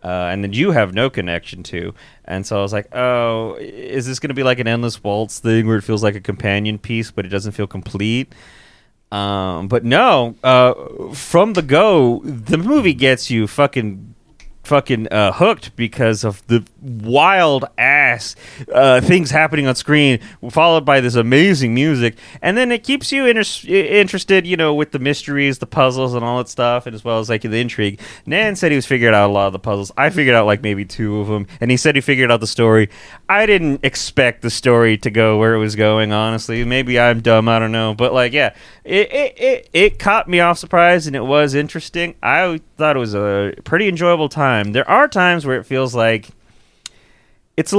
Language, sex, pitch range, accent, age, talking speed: English, male, 110-160 Hz, American, 30-49, 210 wpm